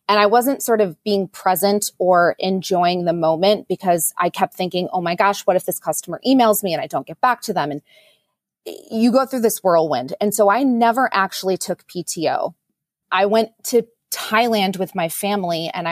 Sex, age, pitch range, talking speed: female, 20-39, 180-225 Hz, 195 wpm